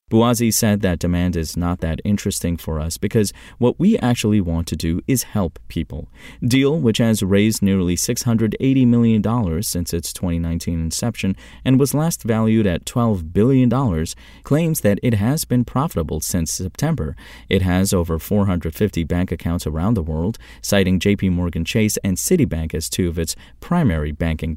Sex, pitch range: male, 85-115 Hz